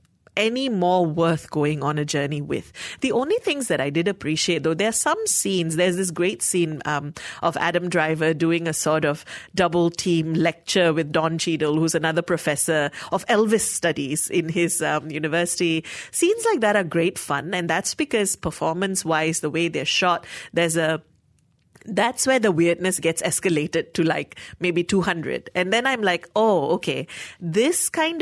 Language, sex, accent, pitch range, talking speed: English, female, Indian, 160-195 Hz, 175 wpm